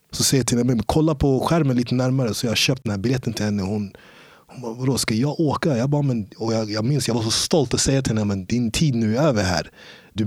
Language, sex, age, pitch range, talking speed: Swedish, male, 30-49, 105-125 Hz, 275 wpm